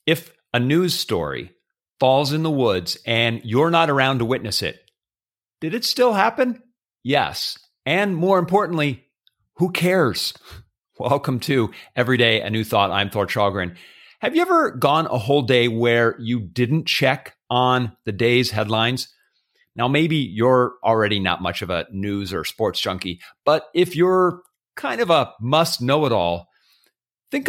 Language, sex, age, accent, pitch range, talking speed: English, male, 40-59, American, 115-165 Hz, 155 wpm